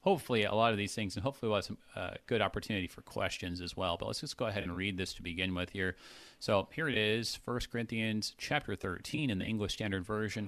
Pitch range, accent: 100-135 Hz, American